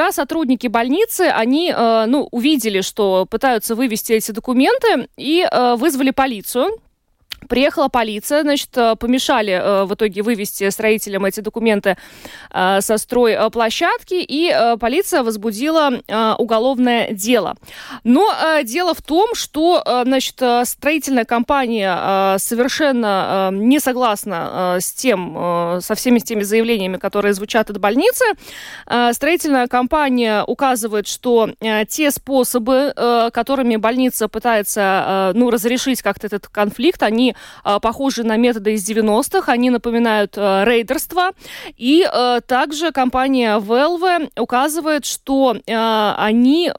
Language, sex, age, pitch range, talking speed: Russian, female, 20-39, 215-275 Hz, 110 wpm